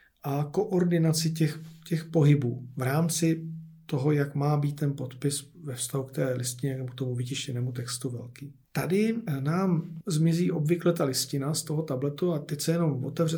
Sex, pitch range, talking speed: male, 135-160 Hz, 170 wpm